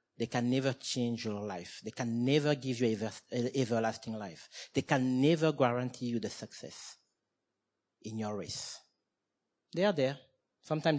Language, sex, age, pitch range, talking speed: English, male, 40-59, 120-165 Hz, 165 wpm